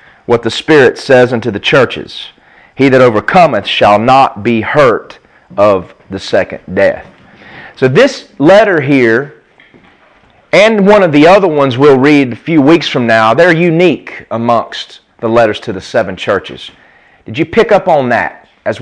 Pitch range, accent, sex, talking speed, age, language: 115-180 Hz, American, male, 165 wpm, 30-49, English